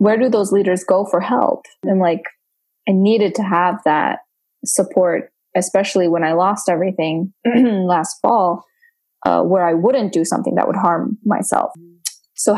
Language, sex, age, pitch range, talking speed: English, female, 20-39, 180-220 Hz, 155 wpm